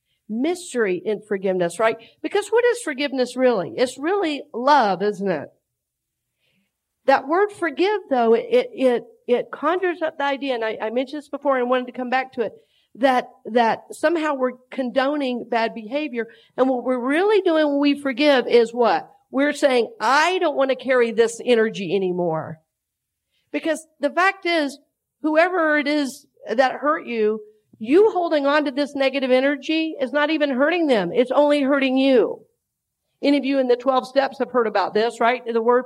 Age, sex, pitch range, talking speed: 50-69, female, 245-310 Hz, 175 wpm